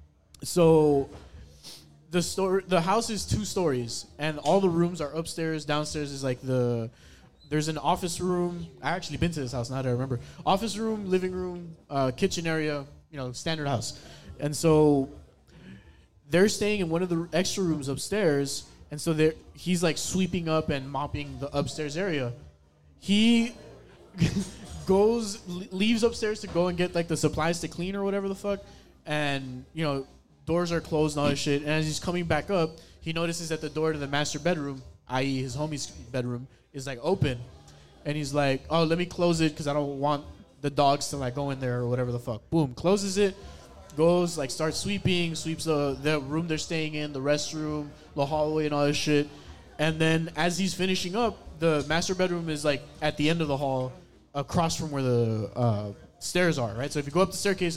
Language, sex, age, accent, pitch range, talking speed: English, male, 20-39, American, 140-175 Hz, 200 wpm